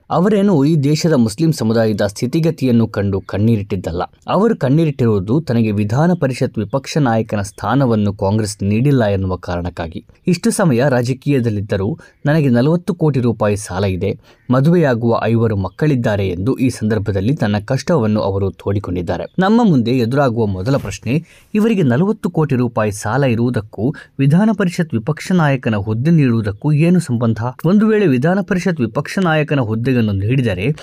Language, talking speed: Kannada, 125 wpm